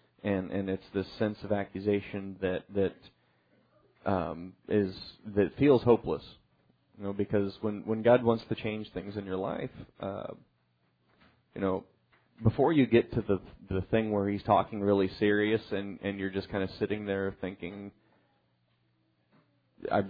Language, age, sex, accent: English, 30-49, male, American